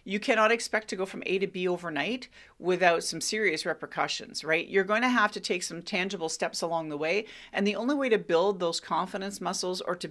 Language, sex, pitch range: English, female, 170-205 Hz